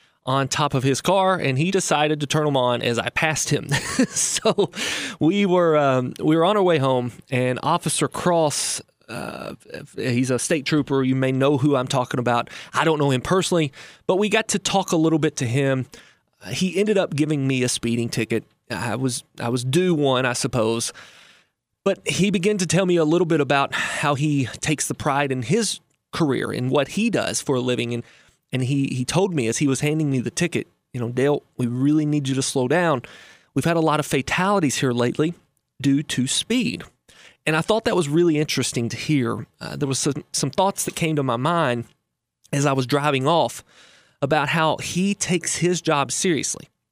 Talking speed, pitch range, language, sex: 210 wpm, 130-165 Hz, English, male